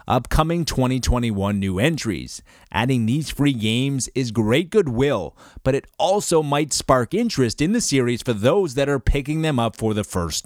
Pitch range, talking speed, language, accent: 110-150 Hz, 170 wpm, English, American